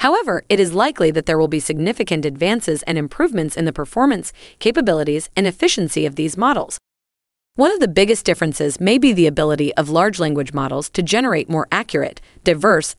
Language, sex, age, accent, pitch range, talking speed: English, female, 30-49, American, 155-215 Hz, 180 wpm